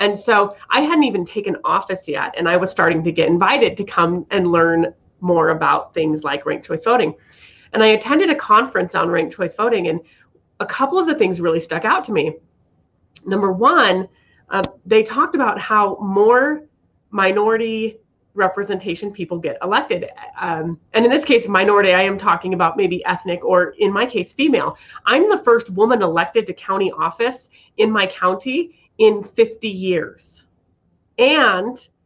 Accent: American